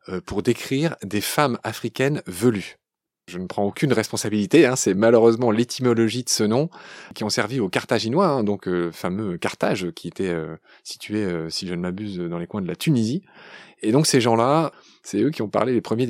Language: French